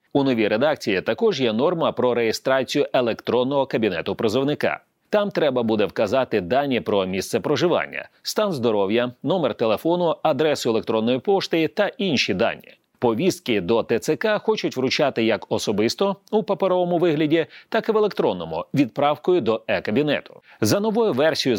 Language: Ukrainian